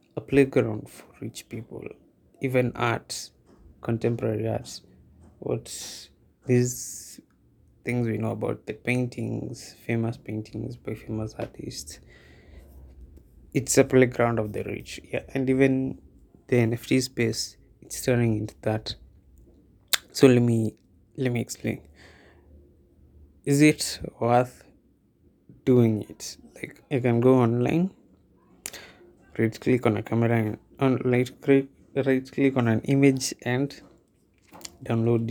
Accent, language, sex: Indian, English, male